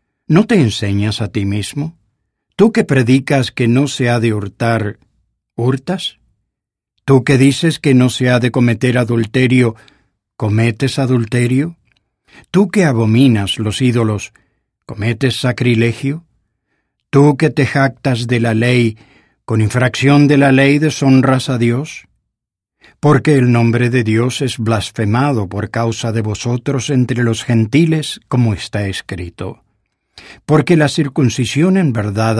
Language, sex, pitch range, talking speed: English, male, 110-140 Hz, 135 wpm